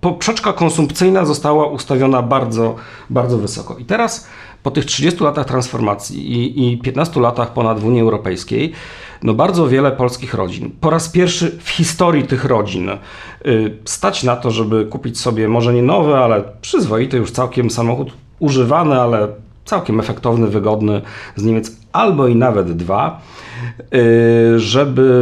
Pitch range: 105-130 Hz